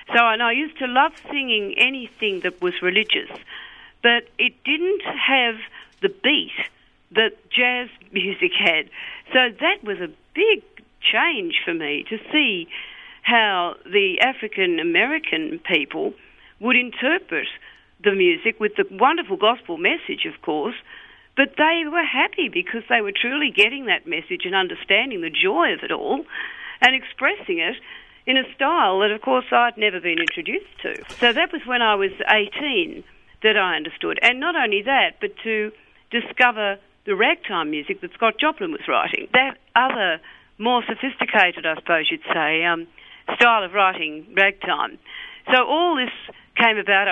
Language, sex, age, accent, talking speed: English, female, 50-69, Australian, 155 wpm